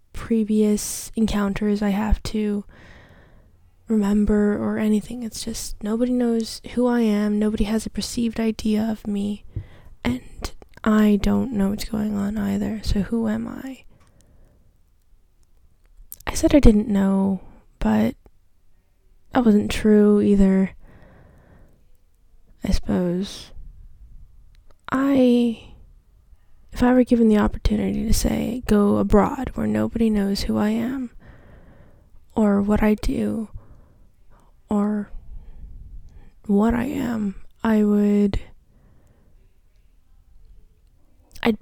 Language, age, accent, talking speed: English, 10-29, American, 105 wpm